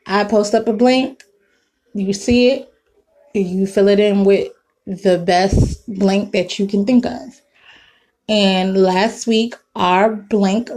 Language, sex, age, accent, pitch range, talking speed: English, female, 20-39, American, 200-245 Hz, 145 wpm